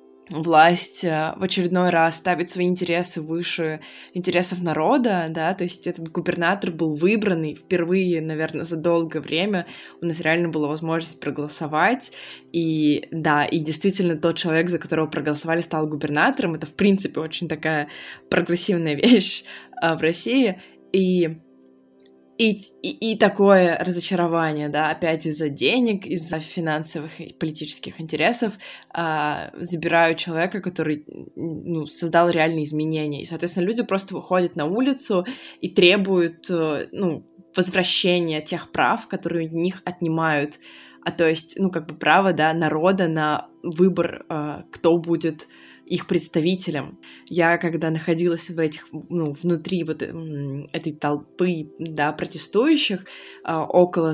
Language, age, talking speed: Russian, 20-39, 125 wpm